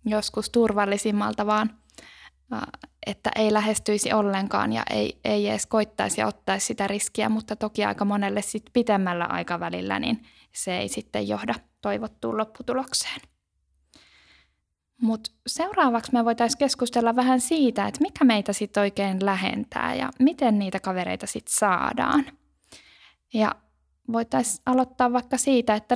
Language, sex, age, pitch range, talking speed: Finnish, female, 10-29, 195-245 Hz, 125 wpm